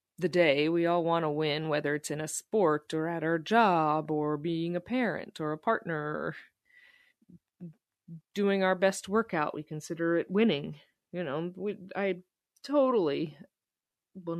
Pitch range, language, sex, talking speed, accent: 165-235 Hz, English, female, 155 wpm, American